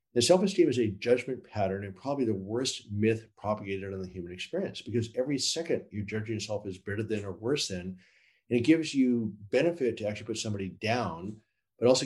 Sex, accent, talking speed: male, American, 200 wpm